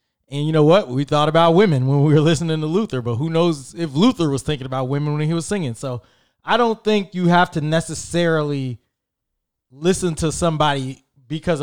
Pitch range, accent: 130-165 Hz, American